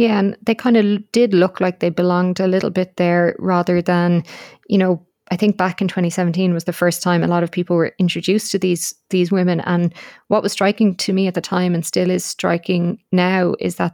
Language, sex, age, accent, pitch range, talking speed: English, female, 20-39, Irish, 160-185 Hz, 230 wpm